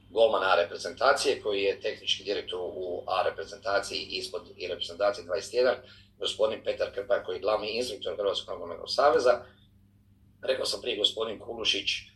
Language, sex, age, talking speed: Croatian, male, 40-59, 145 wpm